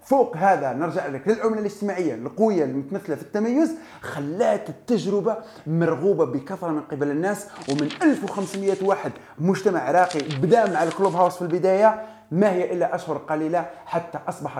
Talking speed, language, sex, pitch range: 145 wpm, Arabic, male, 160-210 Hz